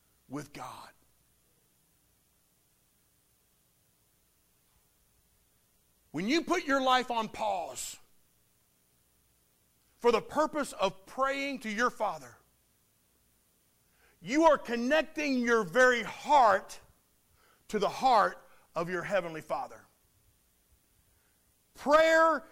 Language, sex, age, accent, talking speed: English, male, 50-69, American, 85 wpm